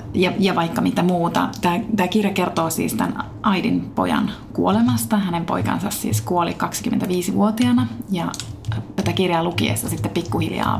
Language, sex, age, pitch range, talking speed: Finnish, female, 30-49, 170-225 Hz, 140 wpm